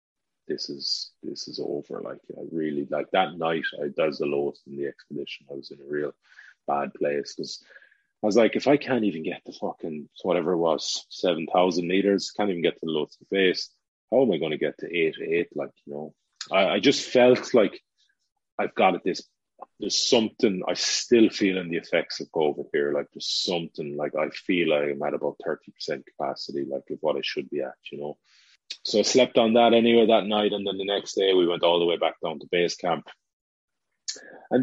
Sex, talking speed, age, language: male, 220 wpm, 30-49, English